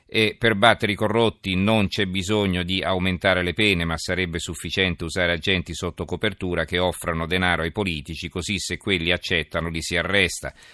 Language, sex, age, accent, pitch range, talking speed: Italian, male, 40-59, native, 85-95 Hz, 175 wpm